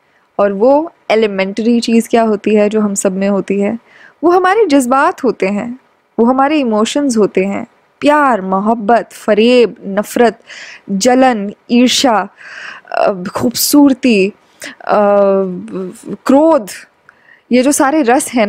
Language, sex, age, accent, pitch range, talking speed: Hindi, female, 10-29, native, 205-260 Hz, 115 wpm